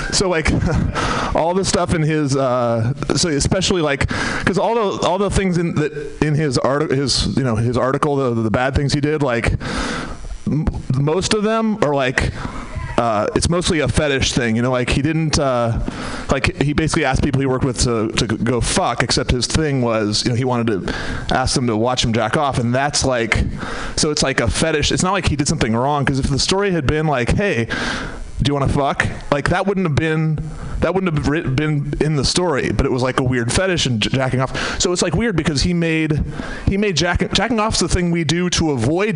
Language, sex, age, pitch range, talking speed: English, male, 30-49, 125-160 Hz, 225 wpm